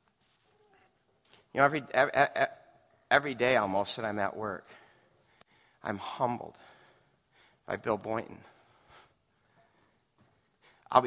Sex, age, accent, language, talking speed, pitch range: male, 50-69, American, English, 90 wpm, 115-165 Hz